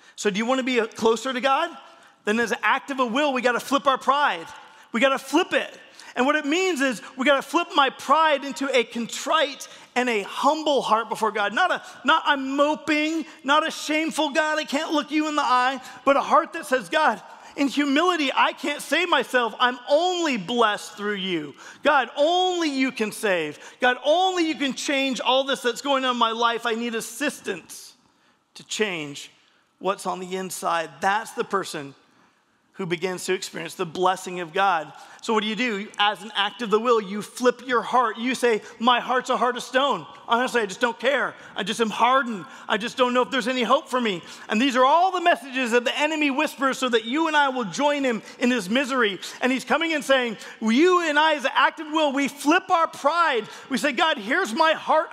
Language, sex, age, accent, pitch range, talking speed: English, male, 40-59, American, 220-295 Hz, 220 wpm